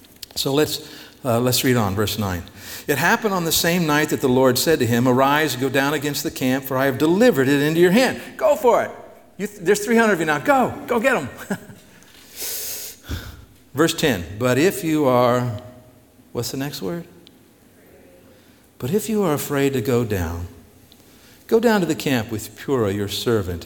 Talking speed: 190 wpm